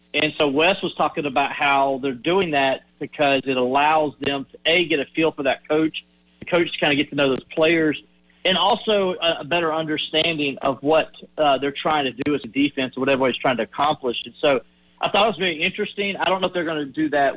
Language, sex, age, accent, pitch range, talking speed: English, male, 40-59, American, 130-155 Hz, 245 wpm